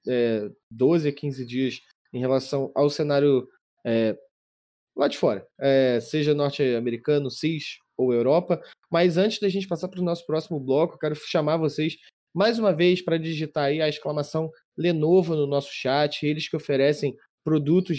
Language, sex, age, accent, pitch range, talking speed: Portuguese, male, 20-39, Brazilian, 140-165 Hz, 150 wpm